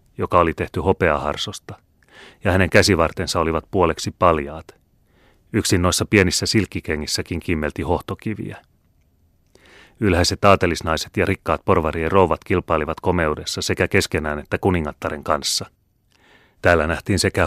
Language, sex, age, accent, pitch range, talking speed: Finnish, male, 30-49, native, 80-95 Hz, 110 wpm